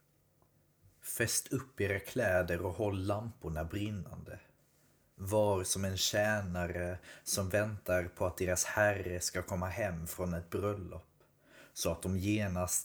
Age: 30-49